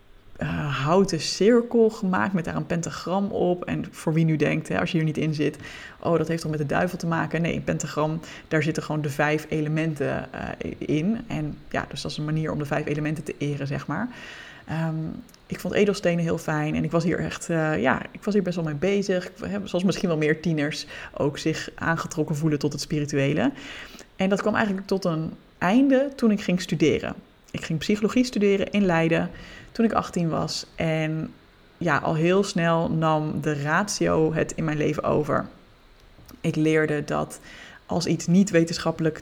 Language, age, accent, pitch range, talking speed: Dutch, 20-39, Dutch, 155-190 Hz, 190 wpm